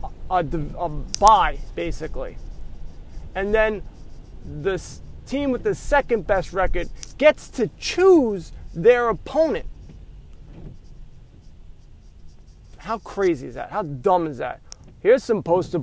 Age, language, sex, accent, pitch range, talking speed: 30-49, English, male, American, 135-220 Hz, 105 wpm